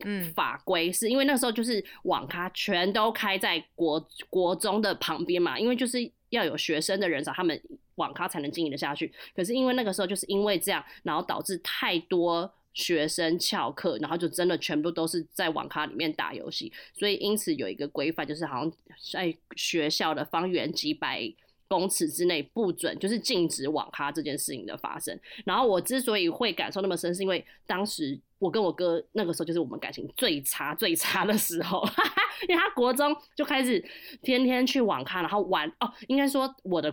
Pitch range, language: 165-215 Hz, Chinese